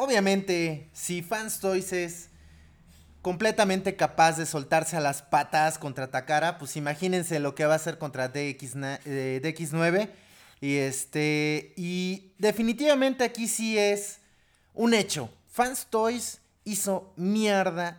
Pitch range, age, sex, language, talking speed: 155-200 Hz, 30-49, male, Spanish, 125 wpm